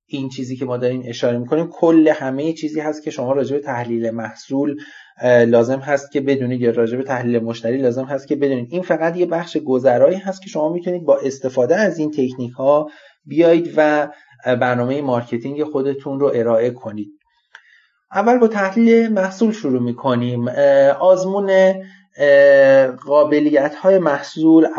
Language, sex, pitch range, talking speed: Persian, male, 125-160 Hz, 150 wpm